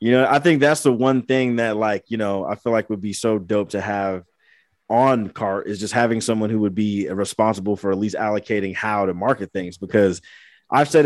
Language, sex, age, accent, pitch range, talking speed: English, male, 20-39, American, 105-130 Hz, 230 wpm